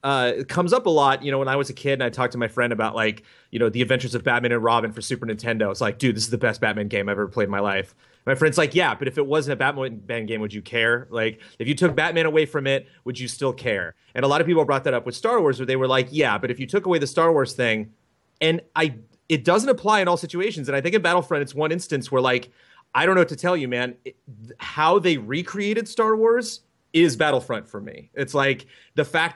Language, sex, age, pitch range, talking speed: English, male, 30-49, 120-165 Hz, 280 wpm